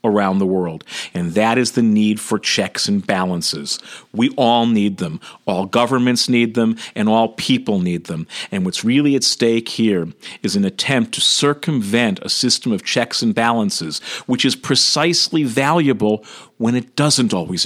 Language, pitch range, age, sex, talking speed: English, 100-125 Hz, 50-69, male, 170 wpm